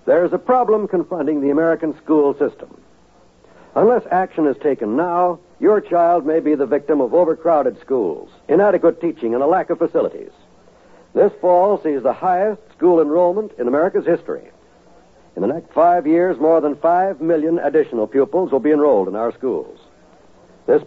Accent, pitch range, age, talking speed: American, 150-195 Hz, 70-89, 165 wpm